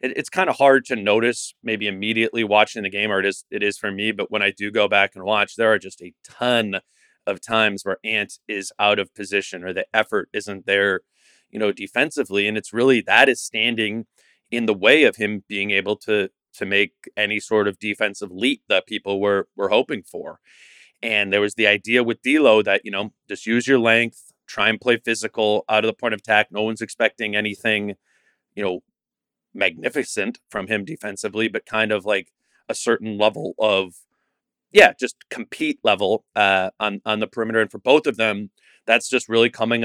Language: English